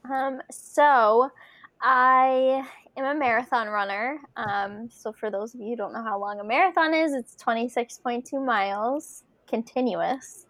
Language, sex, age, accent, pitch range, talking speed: English, female, 10-29, American, 225-265 Hz, 145 wpm